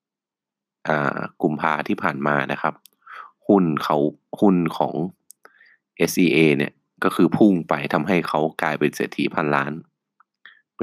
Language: Thai